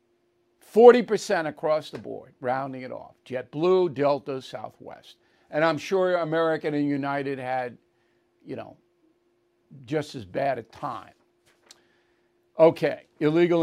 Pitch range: 140-175 Hz